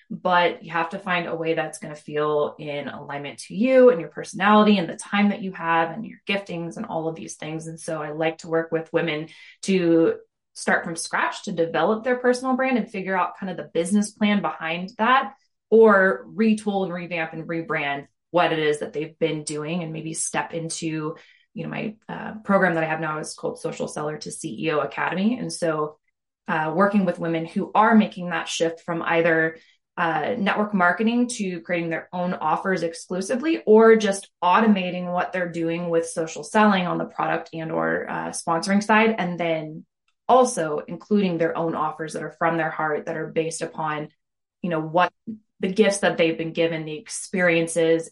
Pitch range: 160-200 Hz